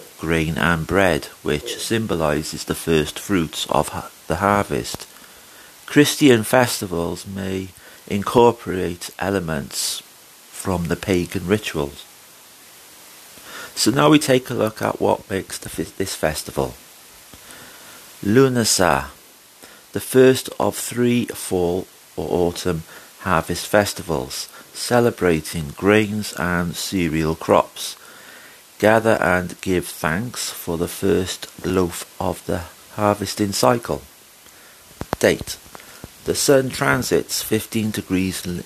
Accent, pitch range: British, 85-110 Hz